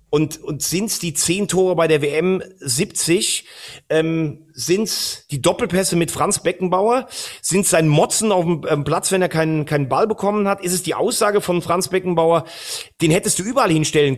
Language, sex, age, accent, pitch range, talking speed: German, male, 40-59, German, 155-190 Hz, 190 wpm